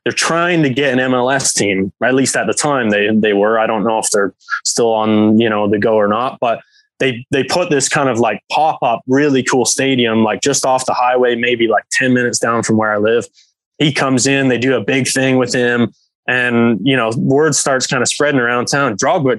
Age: 20-39